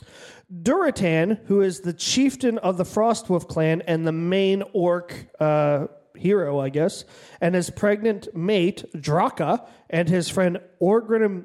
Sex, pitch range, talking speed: male, 160-200 Hz, 135 wpm